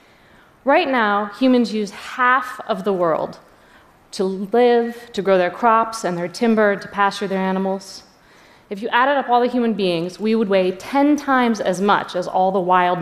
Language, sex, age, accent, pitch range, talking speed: Russian, female, 30-49, American, 190-235 Hz, 185 wpm